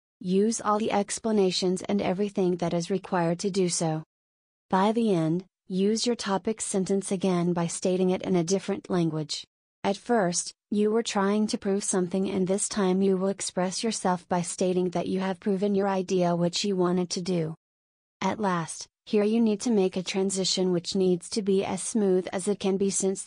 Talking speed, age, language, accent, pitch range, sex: 195 wpm, 30-49, English, American, 180-200 Hz, female